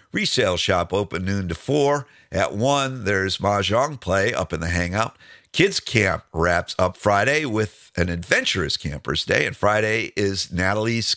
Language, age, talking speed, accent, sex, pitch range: English, 50-69, 155 wpm, American, male, 95-130 Hz